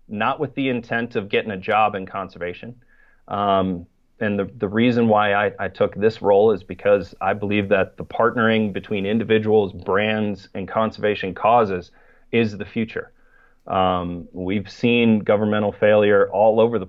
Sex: male